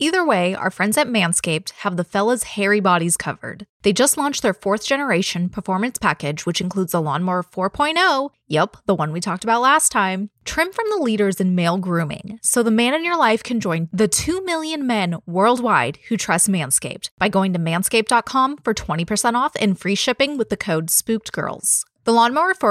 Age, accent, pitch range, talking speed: 20-39, American, 180-245 Hz, 190 wpm